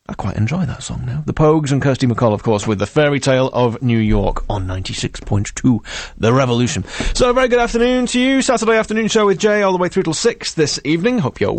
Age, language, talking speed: 30-49, English, 240 wpm